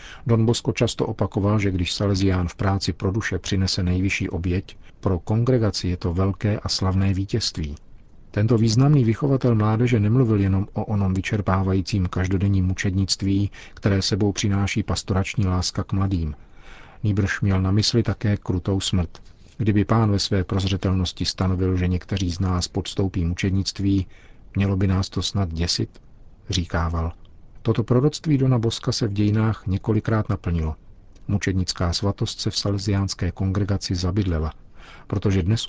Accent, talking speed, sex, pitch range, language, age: native, 140 wpm, male, 90-105 Hz, Czech, 40-59